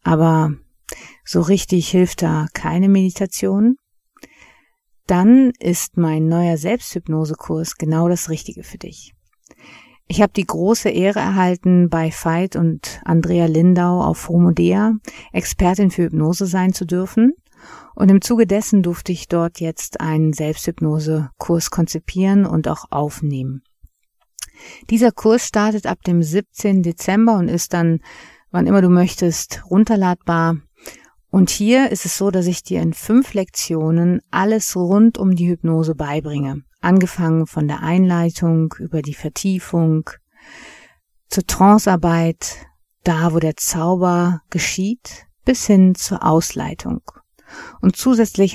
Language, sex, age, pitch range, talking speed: German, female, 50-69, 160-195 Hz, 125 wpm